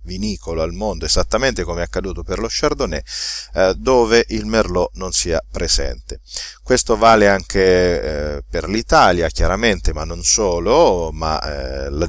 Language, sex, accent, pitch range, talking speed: Italian, male, native, 85-115 Hz, 150 wpm